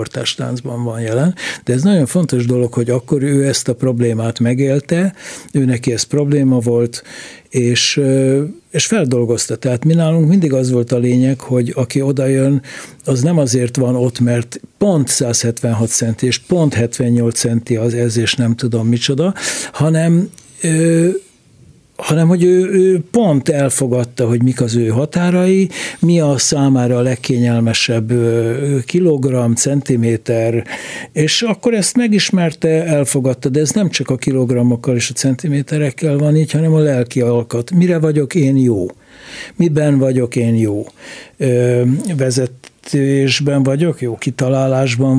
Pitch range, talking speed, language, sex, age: 125-155 Hz, 140 wpm, Hungarian, male, 60-79